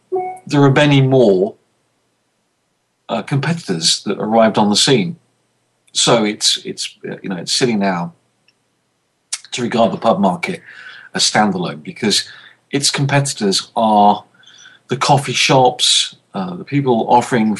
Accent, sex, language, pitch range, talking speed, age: British, male, English, 105-145 Hz, 125 wpm, 40-59